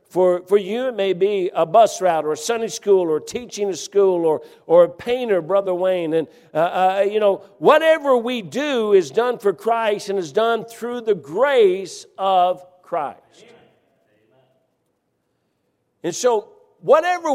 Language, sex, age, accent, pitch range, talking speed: English, male, 60-79, American, 170-225 Hz, 165 wpm